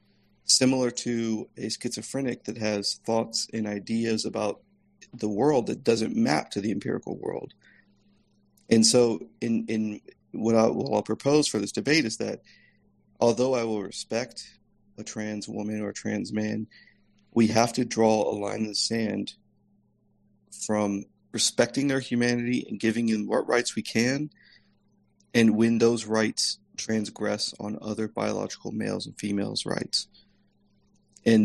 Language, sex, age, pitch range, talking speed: English, male, 40-59, 100-115 Hz, 145 wpm